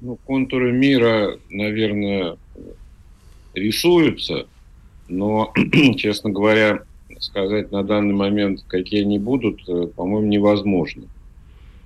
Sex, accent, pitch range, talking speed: male, native, 95-115 Hz, 85 wpm